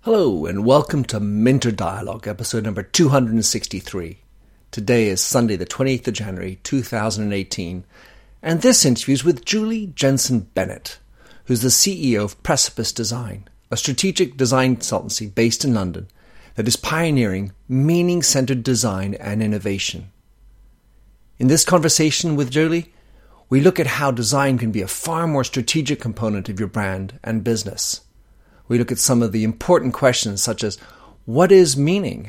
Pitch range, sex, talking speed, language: 110-140 Hz, male, 150 wpm, English